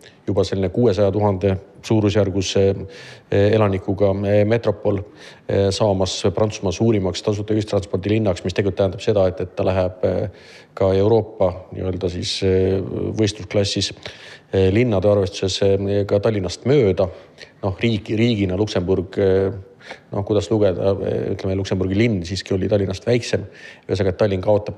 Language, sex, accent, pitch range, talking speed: English, male, Finnish, 95-105 Hz, 115 wpm